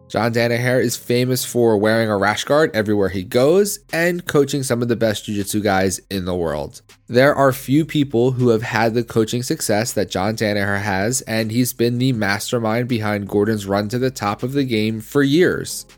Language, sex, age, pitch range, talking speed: English, male, 20-39, 105-130 Hz, 200 wpm